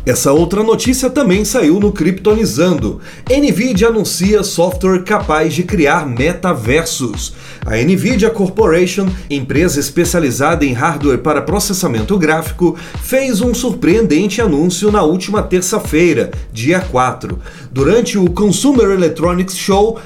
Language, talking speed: Portuguese, 115 wpm